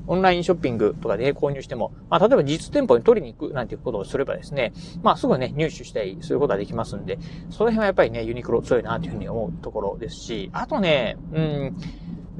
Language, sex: Japanese, male